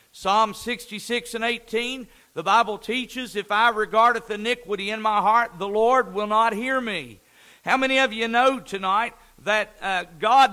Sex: male